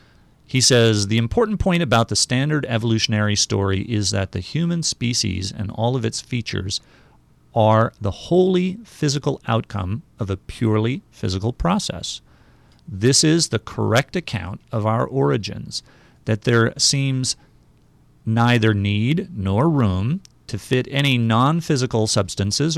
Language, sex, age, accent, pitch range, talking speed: English, male, 40-59, American, 105-125 Hz, 130 wpm